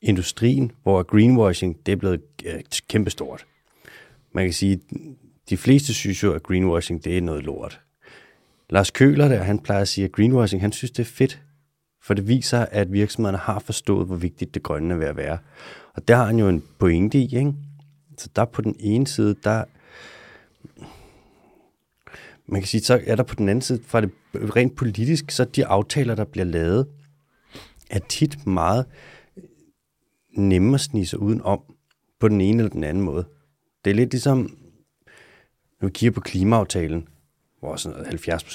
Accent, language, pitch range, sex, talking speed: native, Danish, 90-120 Hz, male, 170 wpm